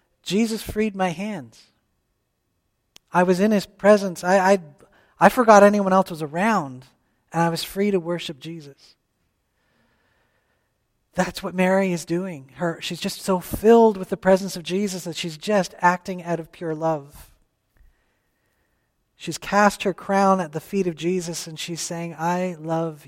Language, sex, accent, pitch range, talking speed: English, male, American, 160-195 Hz, 160 wpm